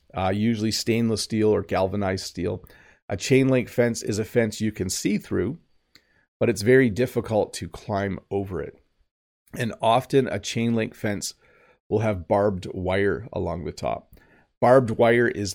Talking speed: 160 wpm